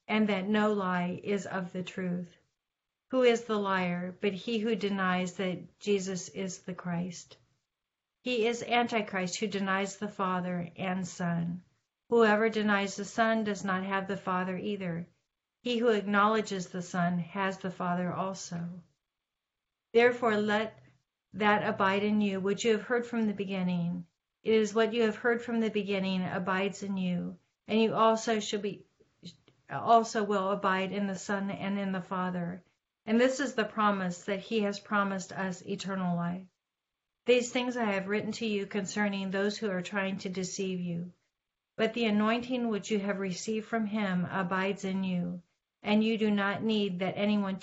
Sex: female